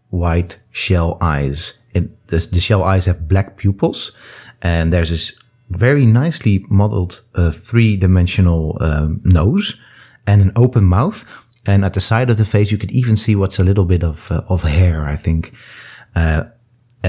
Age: 30-49